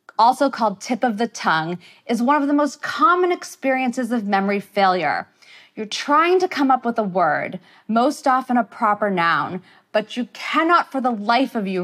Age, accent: 30-49, American